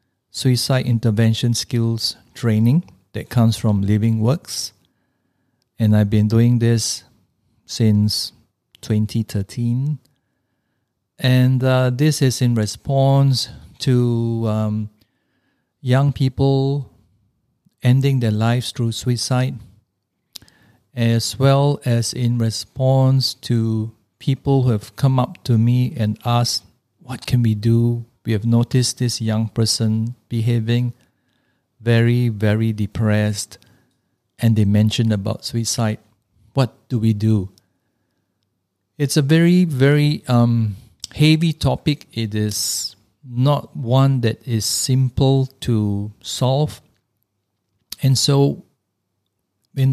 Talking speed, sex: 105 wpm, male